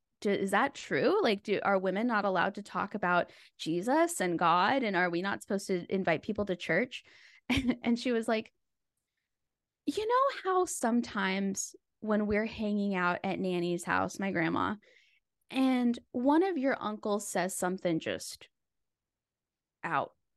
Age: 10-29